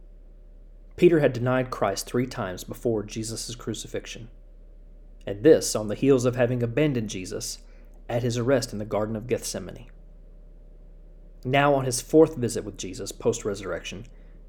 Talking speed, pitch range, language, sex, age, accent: 140 wpm, 85-130 Hz, English, male, 40-59, American